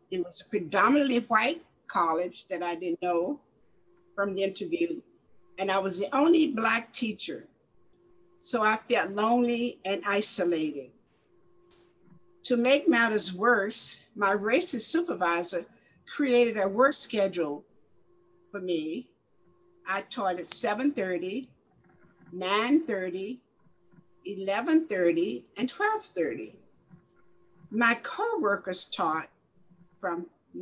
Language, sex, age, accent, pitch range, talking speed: English, female, 60-79, American, 185-270 Hz, 100 wpm